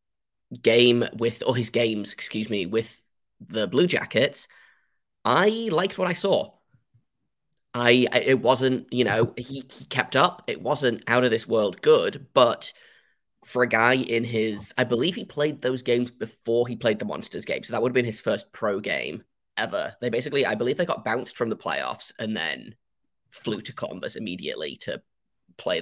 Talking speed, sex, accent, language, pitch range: 180 wpm, male, British, English, 110-135 Hz